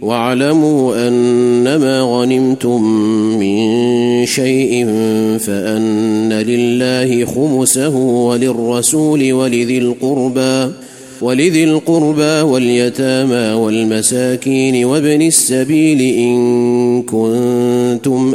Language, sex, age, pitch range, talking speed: Arabic, male, 30-49, 120-150 Hz, 55 wpm